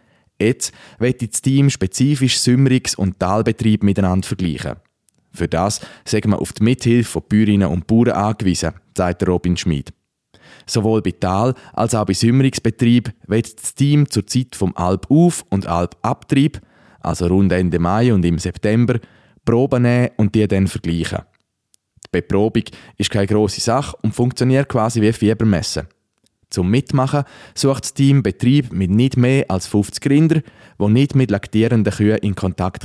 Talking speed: 155 wpm